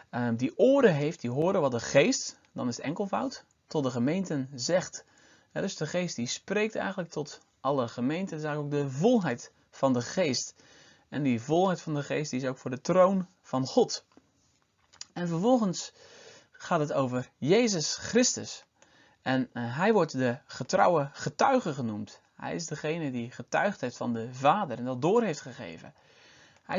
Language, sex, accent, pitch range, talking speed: Dutch, male, Dutch, 130-195 Hz, 175 wpm